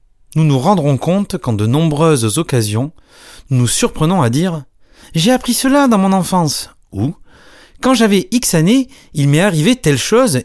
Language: French